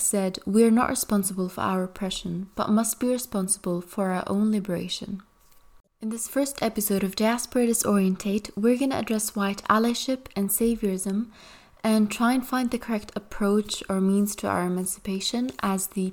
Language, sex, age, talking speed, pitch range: English, female, 20-39, 165 wpm, 185-220 Hz